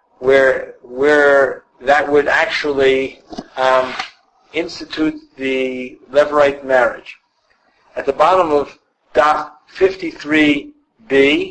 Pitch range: 130-190 Hz